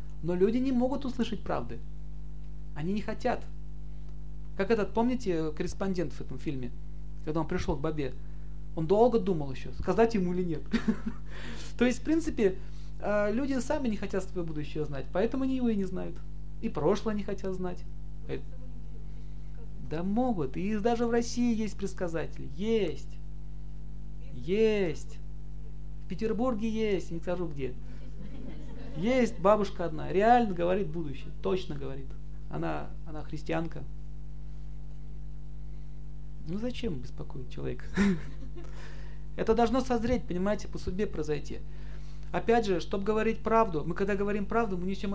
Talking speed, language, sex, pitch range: 135 wpm, Russian, male, 150-205 Hz